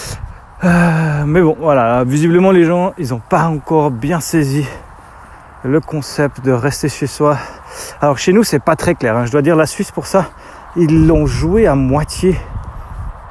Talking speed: 175 wpm